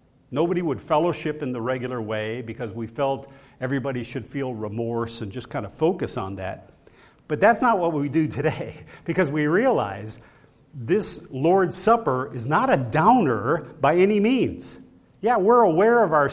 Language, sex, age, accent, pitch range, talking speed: English, male, 50-69, American, 130-205 Hz, 170 wpm